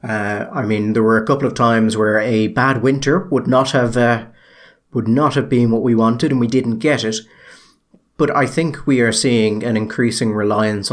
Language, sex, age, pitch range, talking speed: English, male, 30-49, 110-130 Hz, 210 wpm